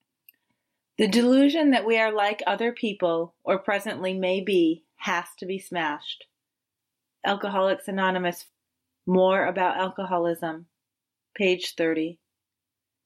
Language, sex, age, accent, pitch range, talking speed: English, female, 30-49, American, 180-220 Hz, 105 wpm